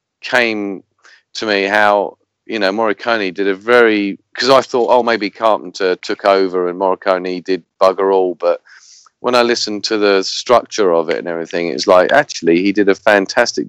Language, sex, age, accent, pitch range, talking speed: English, male, 40-59, British, 90-105 Hz, 180 wpm